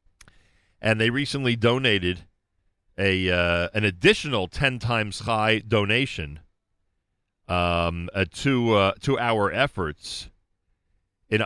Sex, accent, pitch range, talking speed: male, American, 85-100 Hz, 105 wpm